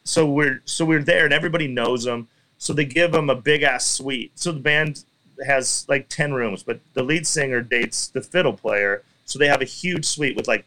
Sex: male